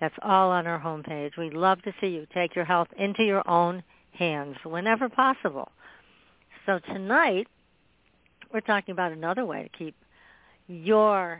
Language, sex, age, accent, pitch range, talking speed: English, female, 60-79, American, 170-220 Hz, 160 wpm